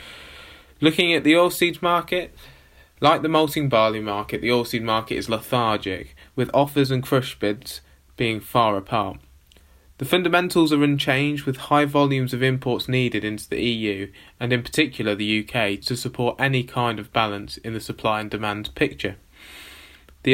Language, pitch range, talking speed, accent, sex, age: English, 105-140 Hz, 160 wpm, British, male, 20-39